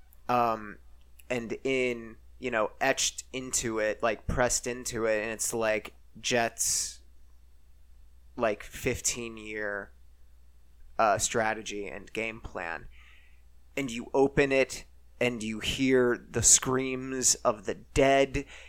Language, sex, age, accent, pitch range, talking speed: English, male, 30-49, American, 115-155 Hz, 115 wpm